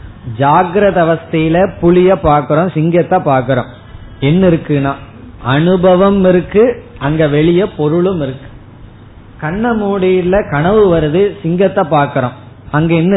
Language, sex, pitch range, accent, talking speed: Tamil, male, 130-180 Hz, native, 100 wpm